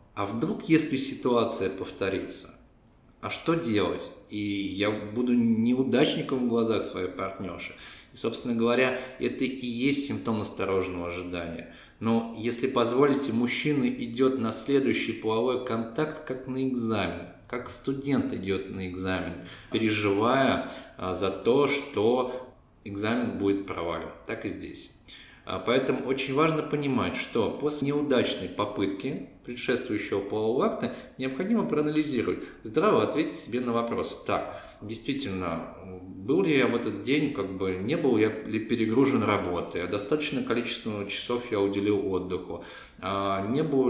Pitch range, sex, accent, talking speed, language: 100-135 Hz, male, native, 125 wpm, Russian